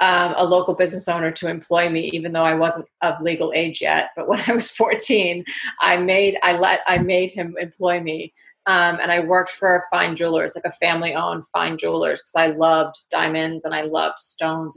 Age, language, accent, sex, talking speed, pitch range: 30-49, English, American, female, 210 wpm, 165-190 Hz